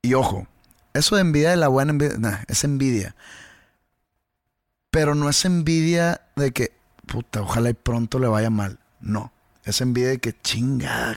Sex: male